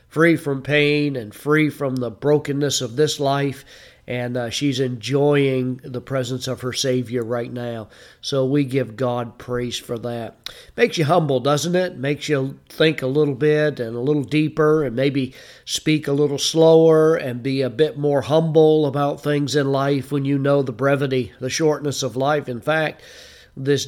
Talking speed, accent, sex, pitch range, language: 180 wpm, American, male, 130-150 Hz, English